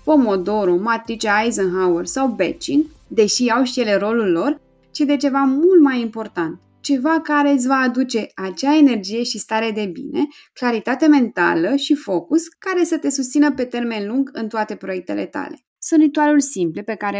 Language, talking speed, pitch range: Romanian, 165 wpm, 205-280 Hz